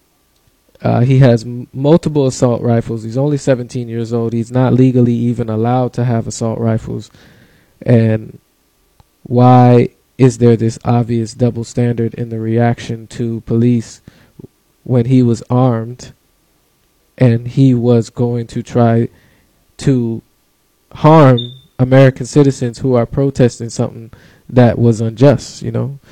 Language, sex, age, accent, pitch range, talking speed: English, male, 20-39, American, 115-135 Hz, 130 wpm